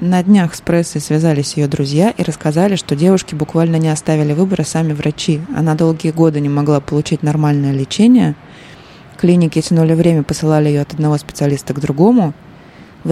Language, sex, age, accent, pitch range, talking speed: Russian, female, 20-39, native, 145-170 Hz, 165 wpm